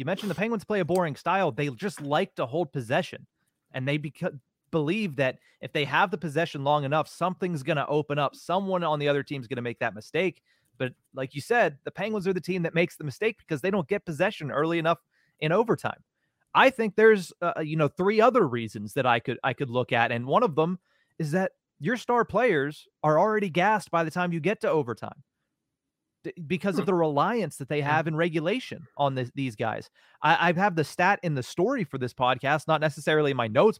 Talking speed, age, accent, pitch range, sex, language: 225 wpm, 30-49, American, 140-185 Hz, male, English